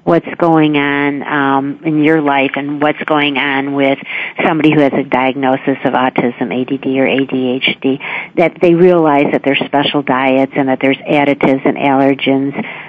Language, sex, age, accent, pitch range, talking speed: English, female, 50-69, American, 135-155 Hz, 165 wpm